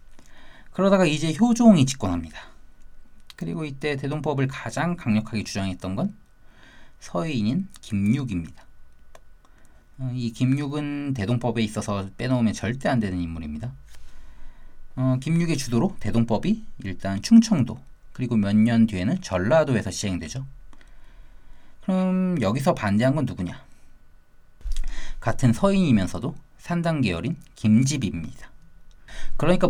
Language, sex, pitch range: Korean, male, 100-150 Hz